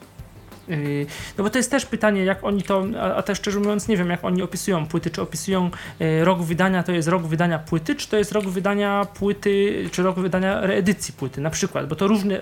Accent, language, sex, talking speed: native, Polish, male, 220 wpm